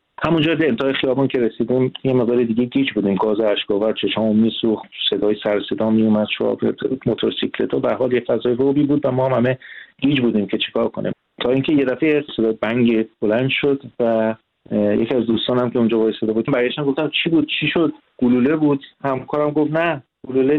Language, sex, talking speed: Persian, male, 190 wpm